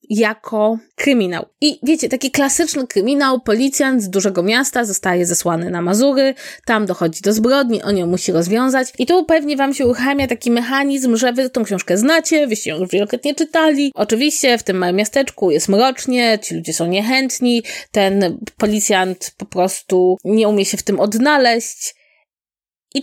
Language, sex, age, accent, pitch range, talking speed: Polish, female, 20-39, native, 215-295 Hz, 165 wpm